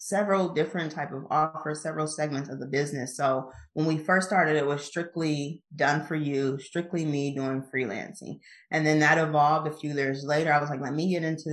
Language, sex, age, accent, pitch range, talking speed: English, female, 30-49, American, 145-160 Hz, 210 wpm